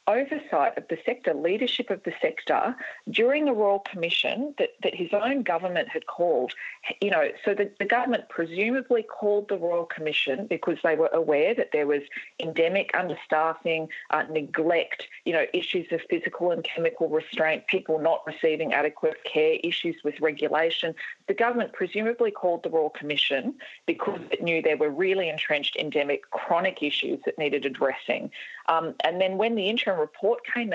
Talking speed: 170 wpm